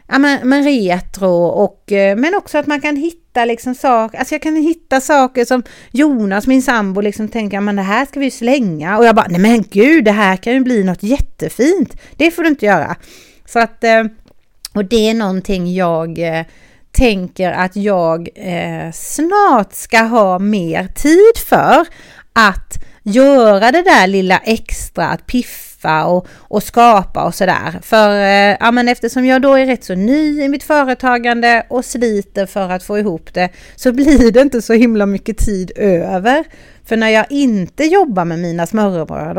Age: 30-49